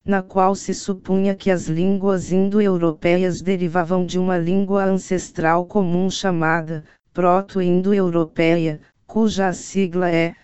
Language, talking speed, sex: Portuguese, 110 wpm, female